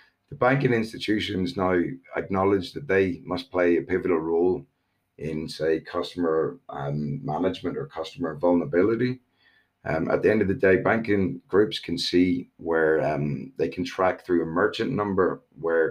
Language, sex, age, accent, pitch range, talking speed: English, male, 30-49, British, 80-95 Hz, 155 wpm